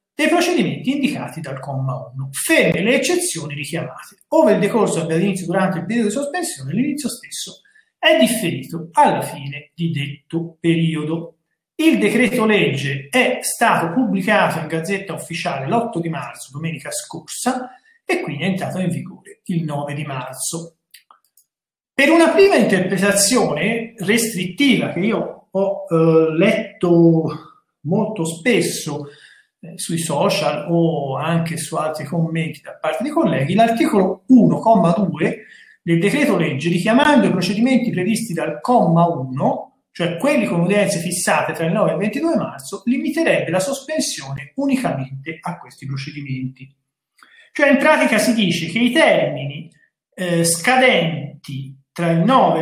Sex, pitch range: male, 160-245 Hz